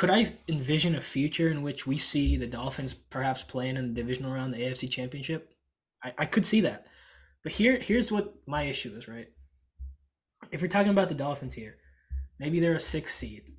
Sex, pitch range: male, 130-165 Hz